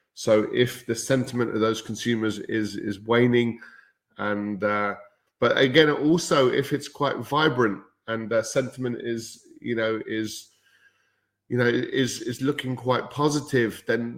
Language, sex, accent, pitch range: English, male, British, 110-125 Hz